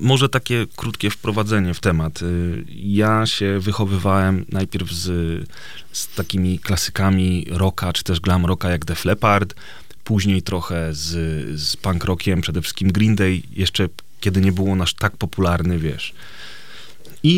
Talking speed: 140 wpm